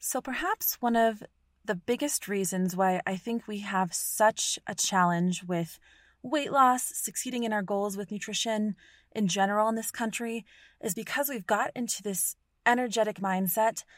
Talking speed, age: 160 wpm, 20-39